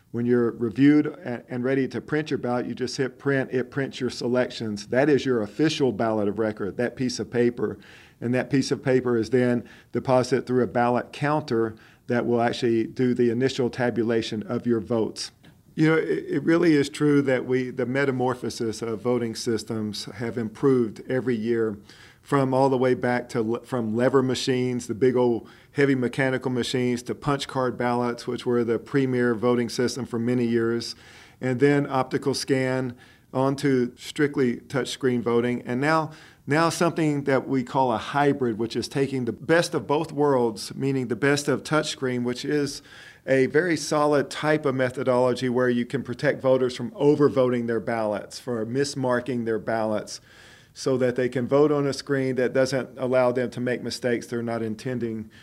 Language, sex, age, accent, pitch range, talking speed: English, male, 40-59, American, 120-135 Hz, 180 wpm